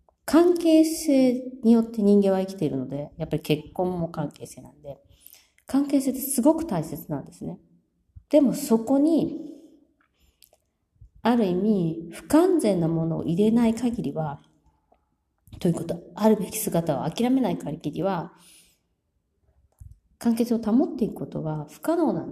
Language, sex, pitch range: Japanese, female, 145-240 Hz